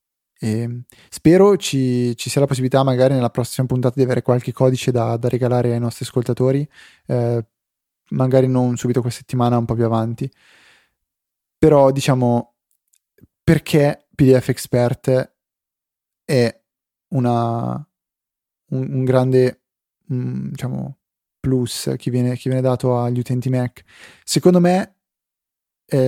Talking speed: 125 wpm